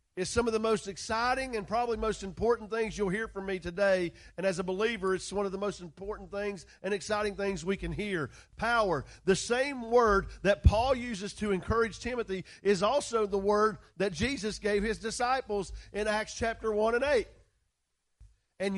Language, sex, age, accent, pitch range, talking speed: English, male, 40-59, American, 195-240 Hz, 190 wpm